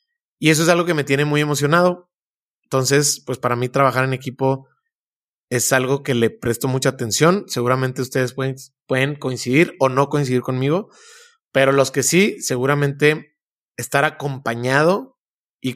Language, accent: Spanish, Mexican